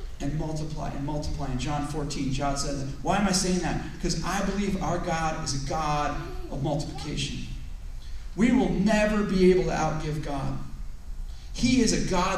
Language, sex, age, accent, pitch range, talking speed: English, male, 40-59, American, 150-210 Hz, 175 wpm